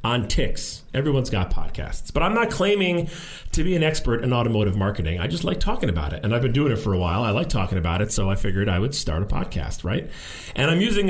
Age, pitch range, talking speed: 40-59, 100-155 Hz, 255 wpm